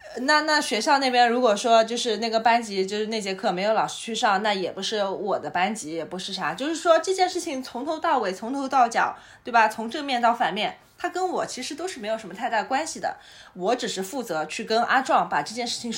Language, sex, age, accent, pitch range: Chinese, female, 20-39, native, 190-275 Hz